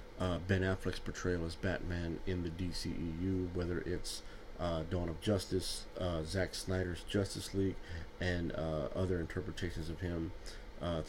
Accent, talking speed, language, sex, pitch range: American, 145 wpm, English, male, 85-95 Hz